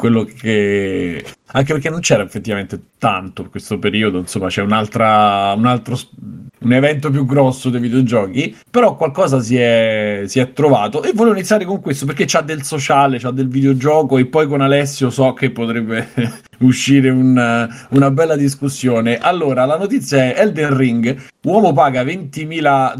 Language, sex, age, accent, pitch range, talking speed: Italian, male, 30-49, native, 115-150 Hz, 160 wpm